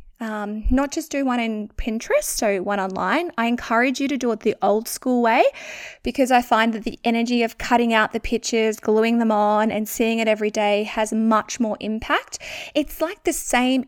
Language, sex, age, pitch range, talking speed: English, female, 20-39, 220-285 Hz, 205 wpm